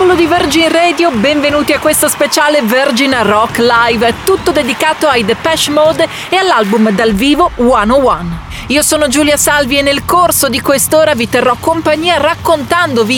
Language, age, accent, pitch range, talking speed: Italian, 40-59, native, 225-315 Hz, 150 wpm